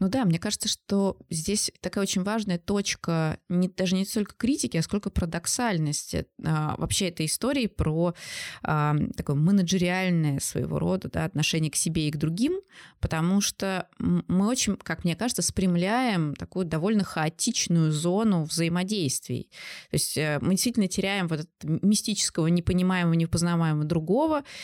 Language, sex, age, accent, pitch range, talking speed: Russian, female, 20-39, native, 160-185 Hz, 140 wpm